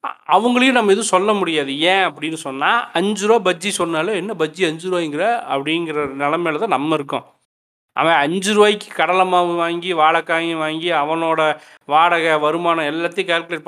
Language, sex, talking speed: Tamil, male, 150 wpm